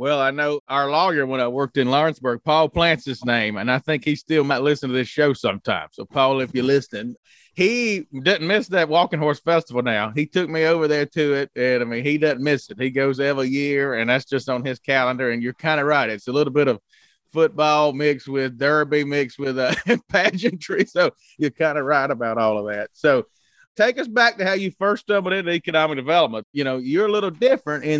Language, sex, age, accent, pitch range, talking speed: English, male, 30-49, American, 135-165 Hz, 230 wpm